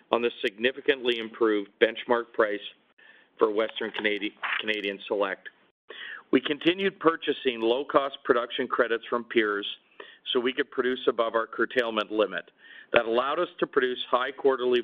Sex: male